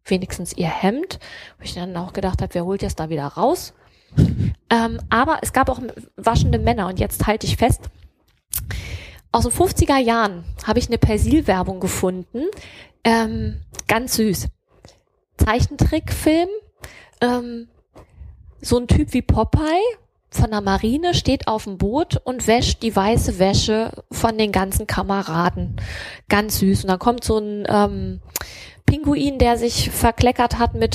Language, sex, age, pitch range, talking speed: German, female, 20-39, 195-245 Hz, 145 wpm